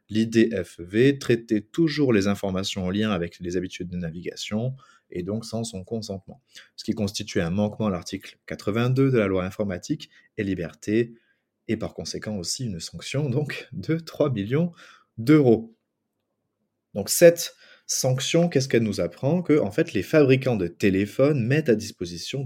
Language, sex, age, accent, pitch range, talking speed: French, male, 30-49, French, 95-135 Hz, 150 wpm